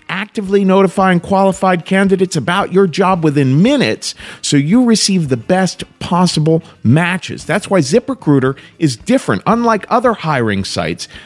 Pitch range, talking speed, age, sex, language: 135-200 Hz, 135 wpm, 50-69, male, English